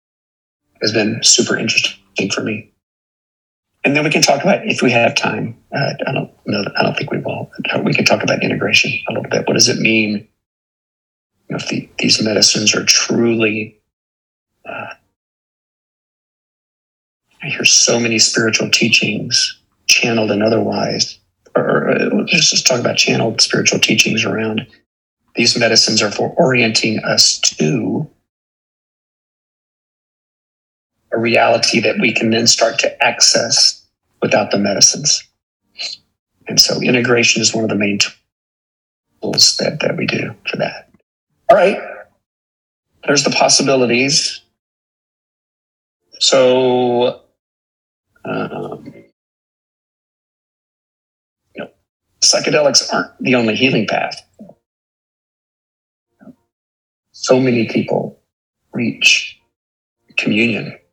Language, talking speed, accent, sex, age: English, 120 wpm, American, male, 40-59